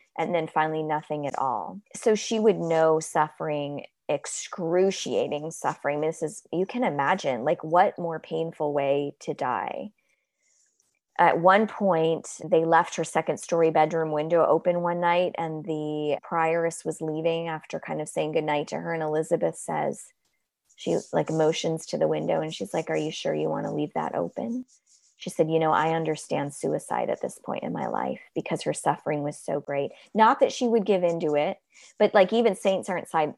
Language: English